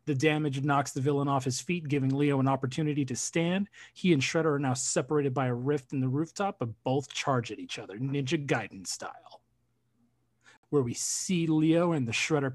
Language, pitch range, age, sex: English, 120-150 Hz, 30-49, male